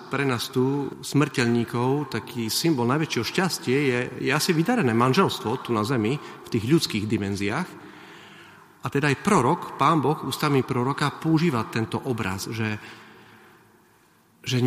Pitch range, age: 110-150 Hz, 40-59